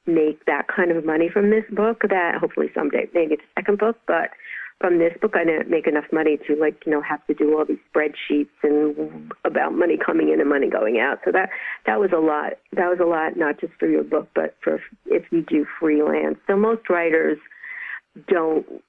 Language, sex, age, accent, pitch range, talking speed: English, female, 50-69, American, 150-185 Hz, 220 wpm